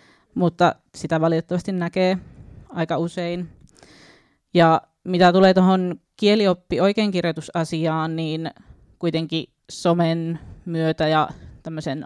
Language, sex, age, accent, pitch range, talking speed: Finnish, female, 20-39, native, 160-180 Hz, 85 wpm